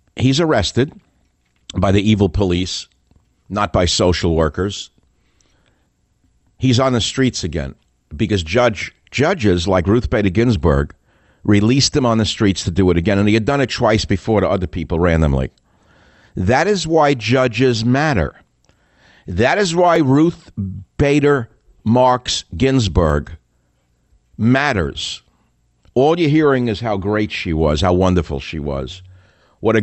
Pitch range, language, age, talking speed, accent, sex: 90-130 Hz, English, 50-69, 140 wpm, American, male